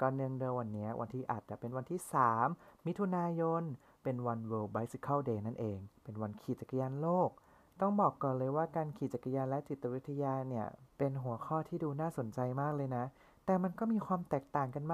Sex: male